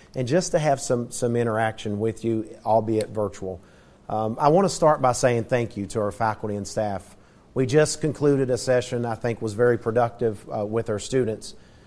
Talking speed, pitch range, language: 195 wpm, 110-135 Hz, English